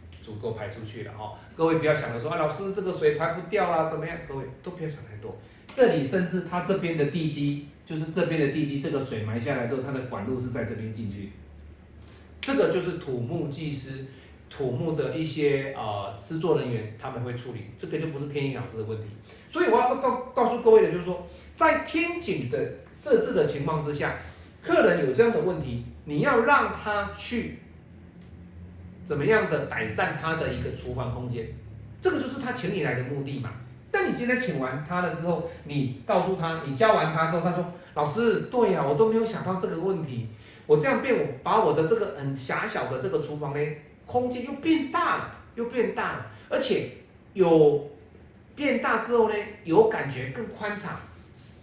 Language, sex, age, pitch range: Chinese, male, 30-49, 125-200 Hz